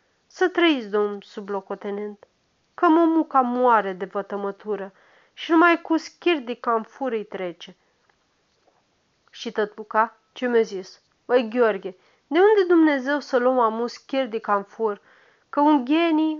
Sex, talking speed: female, 125 wpm